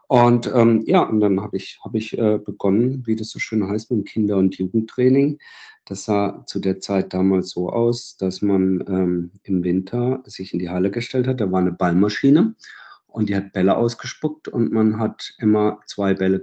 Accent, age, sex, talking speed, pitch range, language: German, 50-69, male, 195 wpm, 100-115 Hz, German